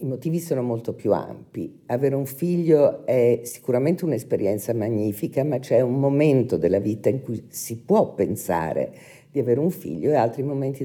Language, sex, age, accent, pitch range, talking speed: Italian, female, 50-69, native, 120-150 Hz, 170 wpm